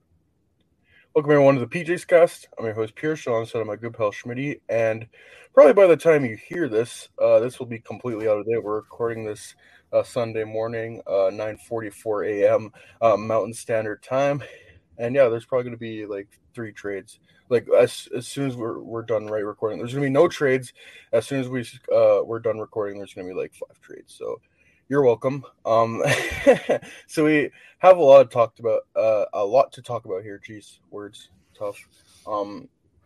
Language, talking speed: English, 200 wpm